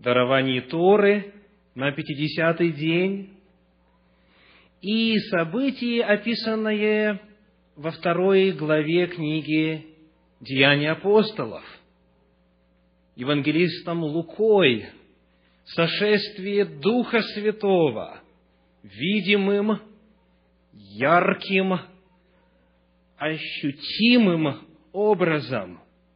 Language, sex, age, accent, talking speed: Russian, male, 40-59, native, 55 wpm